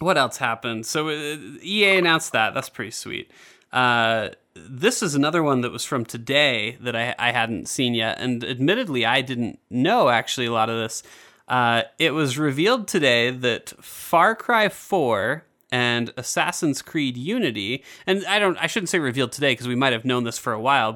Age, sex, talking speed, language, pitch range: 30-49, male, 190 wpm, English, 120-155 Hz